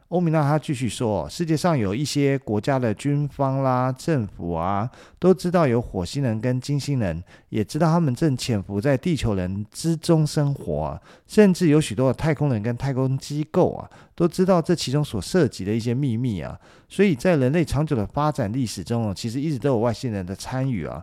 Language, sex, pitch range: Chinese, male, 110-150 Hz